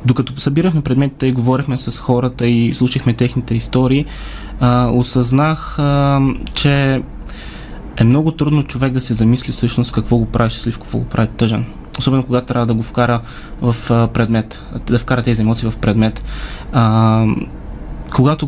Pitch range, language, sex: 115-135 Hz, Bulgarian, male